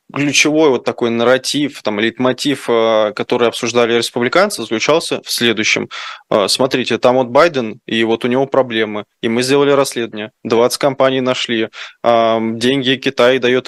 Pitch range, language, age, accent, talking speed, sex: 115-130 Hz, Russian, 20-39, native, 135 wpm, male